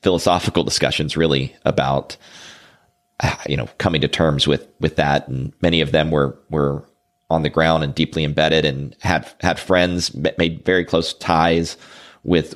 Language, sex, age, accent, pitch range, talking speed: English, male, 30-49, American, 75-90 Hz, 160 wpm